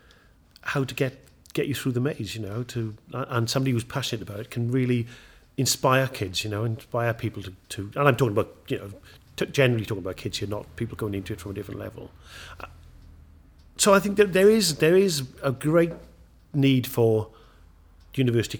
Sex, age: male, 40-59